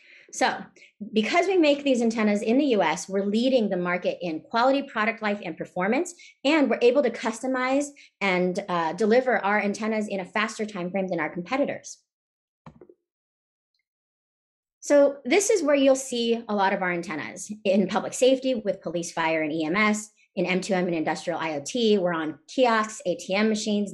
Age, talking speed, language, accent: 30-49, 165 wpm, English, American